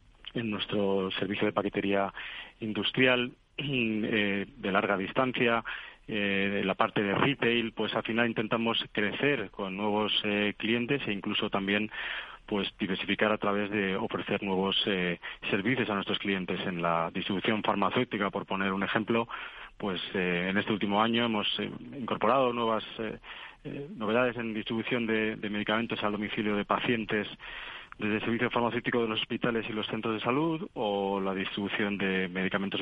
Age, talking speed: 30-49, 160 wpm